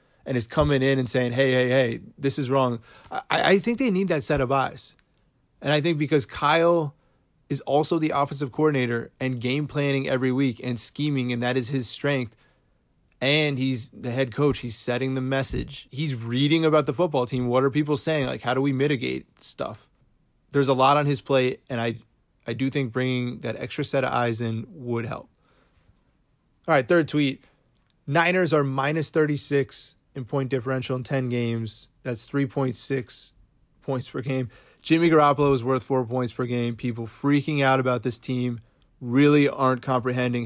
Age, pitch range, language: 20-39, 125-145 Hz, English